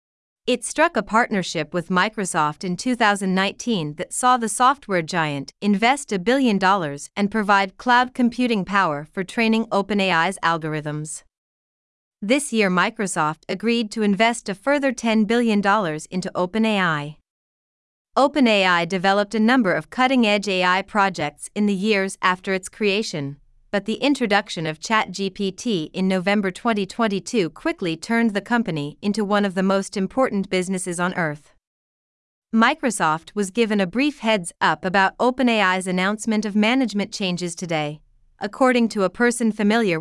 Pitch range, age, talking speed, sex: 180-225 Hz, 30-49, 140 wpm, female